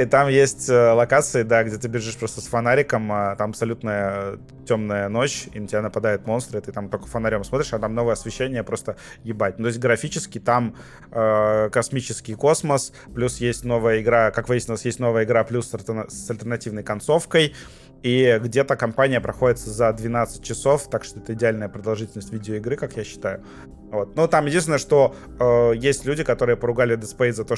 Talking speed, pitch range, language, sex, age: 185 wpm, 110-125 Hz, Russian, male, 20-39